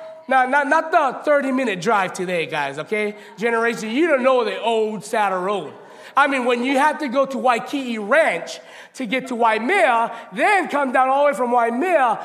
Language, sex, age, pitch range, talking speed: English, male, 30-49, 225-300 Hz, 190 wpm